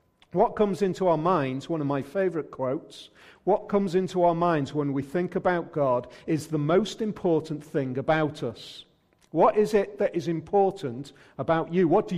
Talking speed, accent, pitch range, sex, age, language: 180 wpm, British, 145-180 Hz, male, 40-59, English